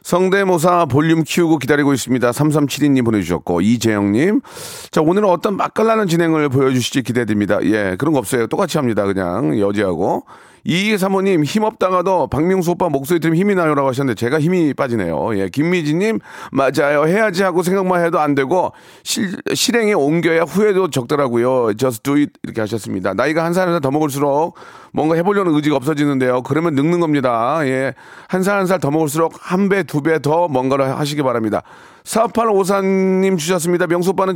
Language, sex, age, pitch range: Korean, male, 40-59, 130-180 Hz